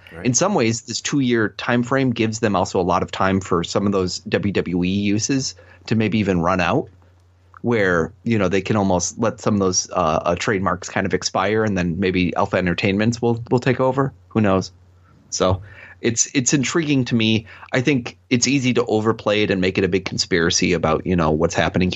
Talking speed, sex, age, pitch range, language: 210 wpm, male, 30-49, 90-115 Hz, English